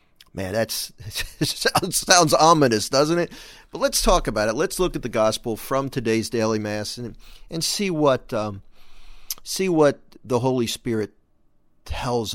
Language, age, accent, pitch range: English, 50-69, American, 105-150 Hz